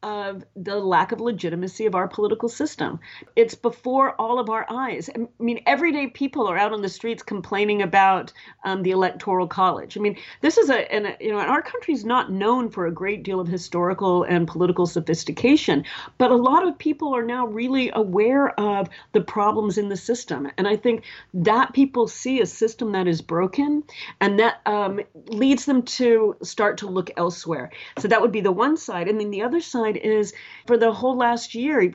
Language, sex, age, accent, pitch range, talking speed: English, female, 40-59, American, 180-230 Hz, 205 wpm